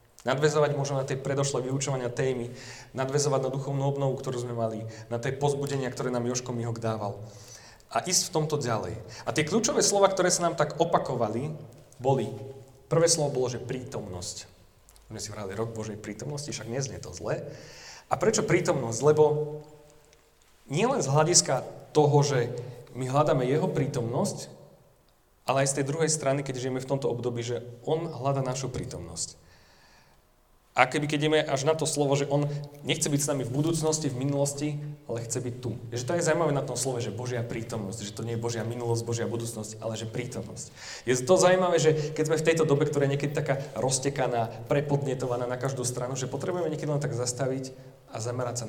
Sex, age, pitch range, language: male, 30-49, 115-145 Hz, Slovak